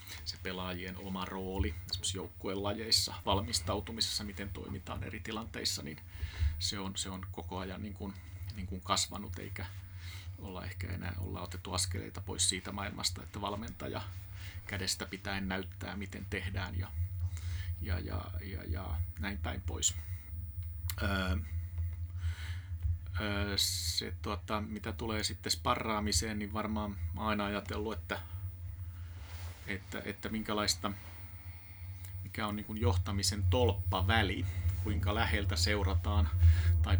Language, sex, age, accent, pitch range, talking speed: Finnish, male, 30-49, native, 90-105 Hz, 115 wpm